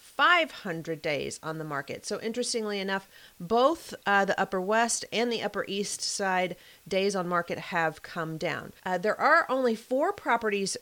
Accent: American